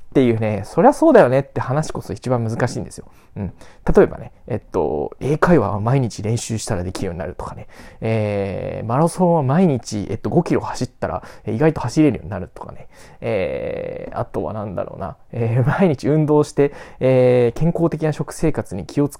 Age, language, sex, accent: 20-39, Japanese, male, native